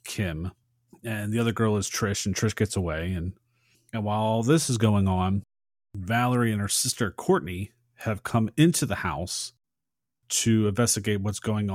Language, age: English, 30-49